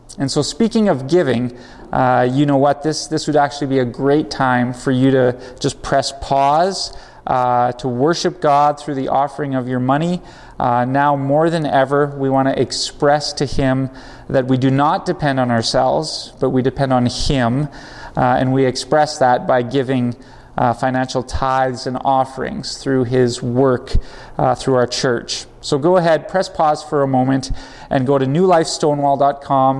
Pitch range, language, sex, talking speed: 125-145 Hz, English, male, 175 wpm